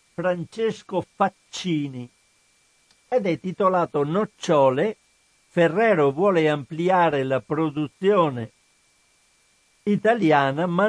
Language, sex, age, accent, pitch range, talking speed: Italian, male, 60-79, native, 140-180 Hz, 70 wpm